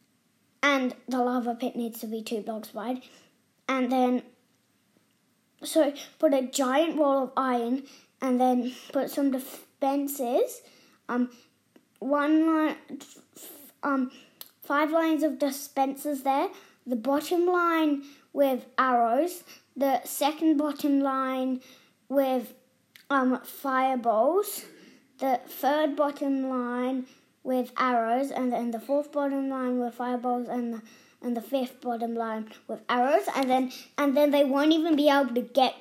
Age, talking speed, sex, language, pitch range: 20-39, 130 wpm, female, English, 245-290 Hz